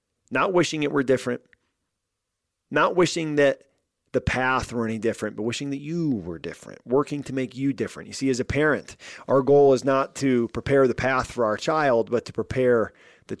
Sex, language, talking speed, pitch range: male, English, 195 wpm, 110-135 Hz